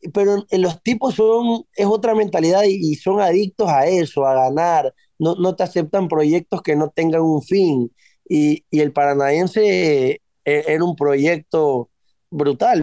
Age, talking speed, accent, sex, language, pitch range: 20-39, 150 wpm, Argentinian, male, Spanish, 150-200 Hz